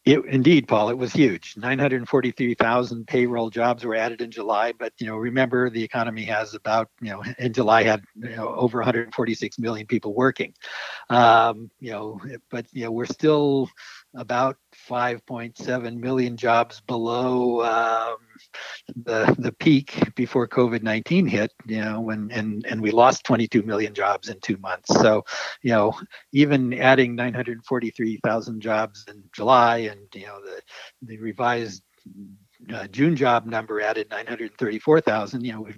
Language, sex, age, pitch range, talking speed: English, male, 60-79, 110-125 Hz, 140 wpm